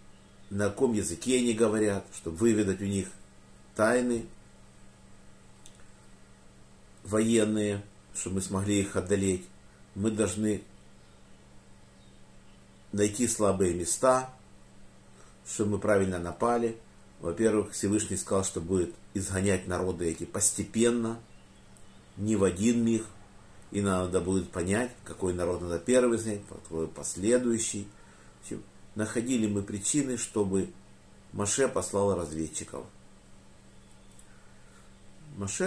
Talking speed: 95 wpm